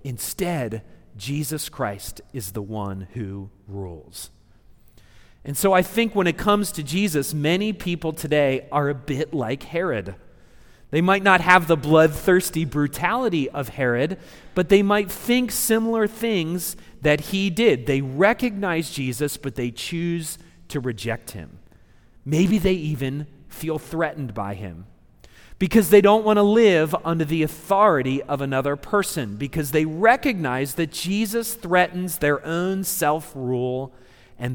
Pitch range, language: 125-185 Hz, English